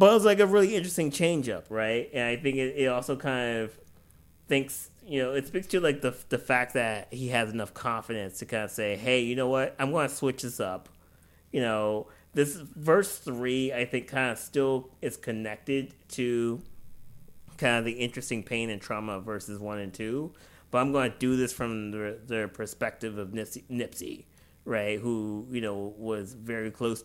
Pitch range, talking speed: 105-130 Hz, 200 wpm